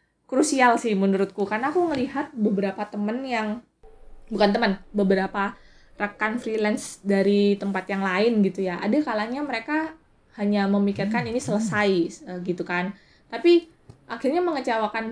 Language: Indonesian